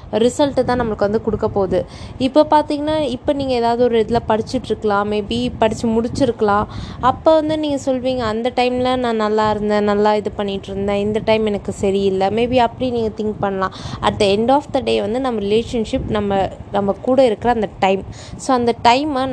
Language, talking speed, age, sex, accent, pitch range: Tamil, 175 wpm, 20-39, female, native, 205-255 Hz